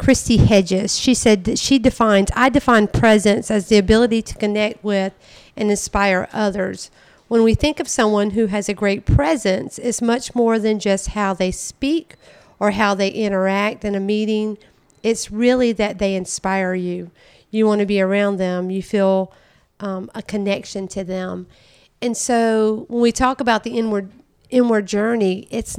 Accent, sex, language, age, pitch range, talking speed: American, female, English, 40-59, 195-230 Hz, 170 wpm